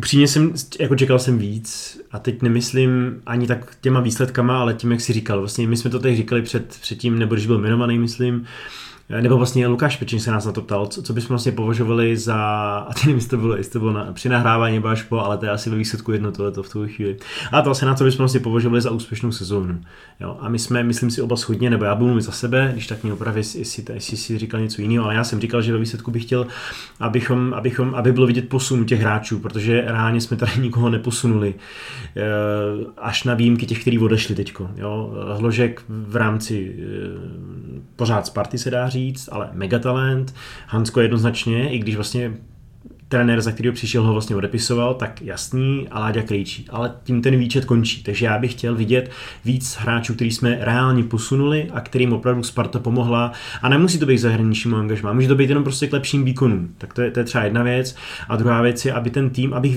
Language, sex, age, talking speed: Czech, male, 30-49, 215 wpm